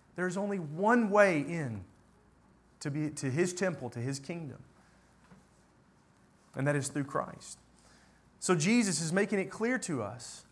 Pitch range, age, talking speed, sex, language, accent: 130-205 Hz, 30-49, 150 wpm, male, English, American